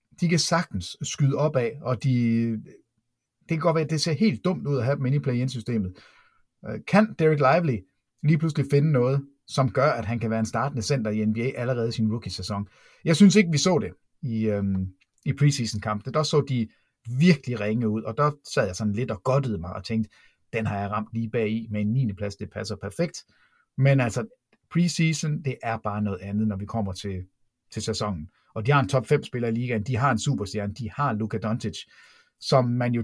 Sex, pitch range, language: male, 110-140 Hz, Danish